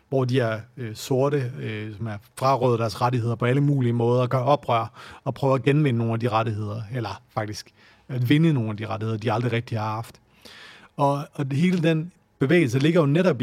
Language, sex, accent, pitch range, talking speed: Danish, male, native, 115-145 Hz, 215 wpm